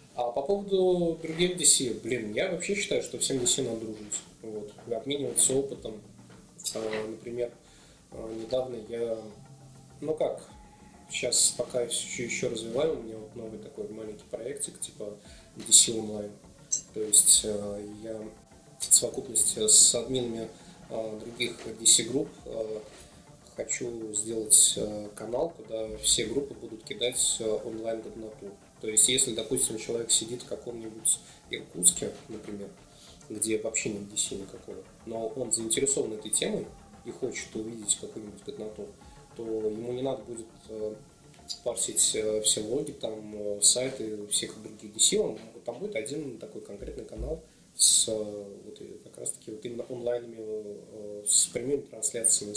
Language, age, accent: Russian, 20-39, native